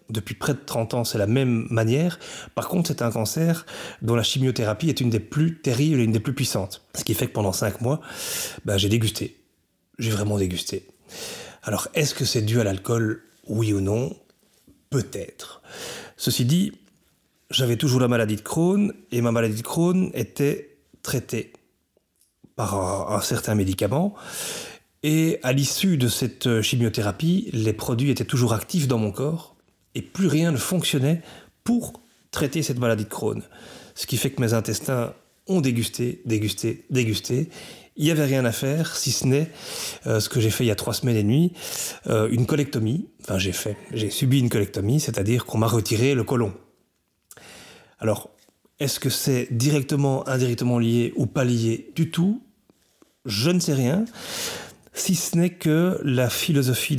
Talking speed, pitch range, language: 175 wpm, 115-150 Hz, French